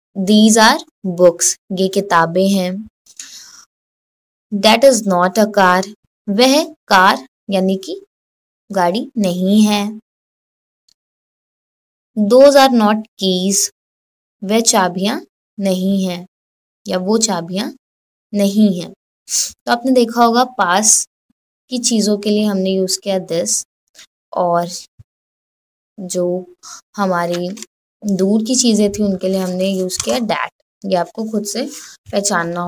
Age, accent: 20-39, native